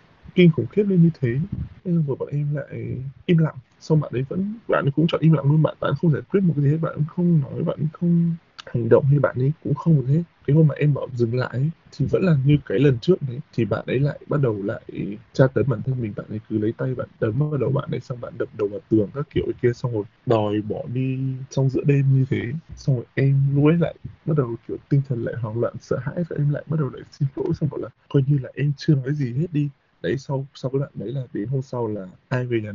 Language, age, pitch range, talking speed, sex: Vietnamese, 20-39, 130-160 Hz, 285 wpm, male